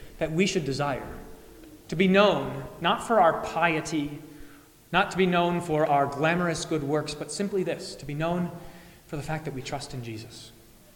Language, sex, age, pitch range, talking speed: English, male, 30-49, 145-180 Hz, 185 wpm